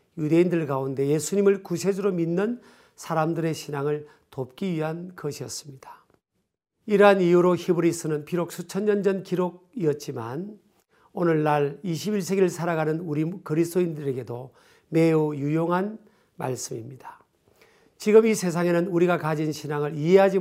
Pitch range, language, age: 155-195 Hz, Korean, 50-69